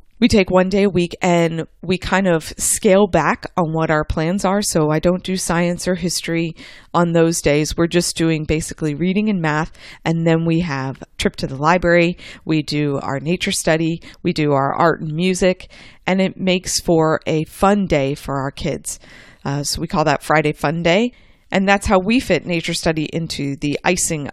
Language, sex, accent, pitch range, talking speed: English, female, American, 155-190 Hz, 200 wpm